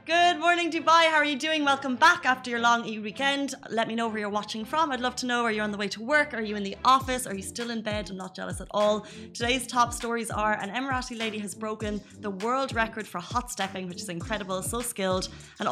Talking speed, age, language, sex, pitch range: 260 wpm, 20-39, Arabic, female, 195-240 Hz